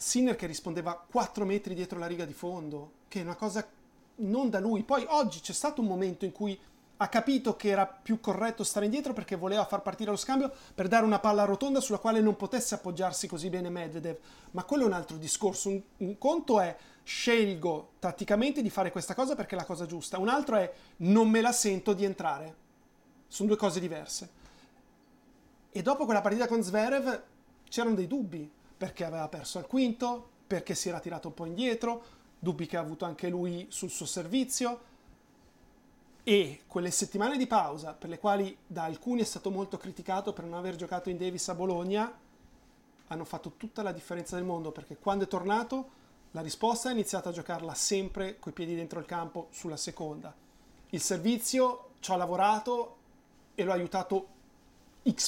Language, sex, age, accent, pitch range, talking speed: Italian, male, 30-49, native, 175-225 Hz, 190 wpm